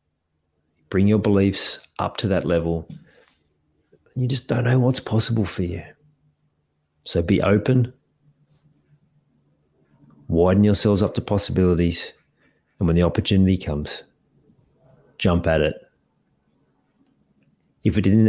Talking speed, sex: 110 wpm, male